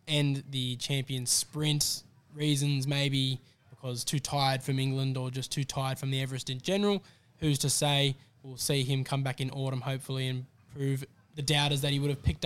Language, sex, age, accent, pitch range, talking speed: English, male, 10-29, Australian, 135-150 Hz, 195 wpm